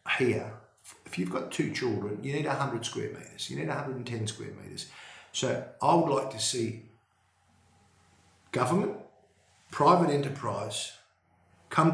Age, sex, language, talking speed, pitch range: 50-69, male, English, 130 wpm, 105-125 Hz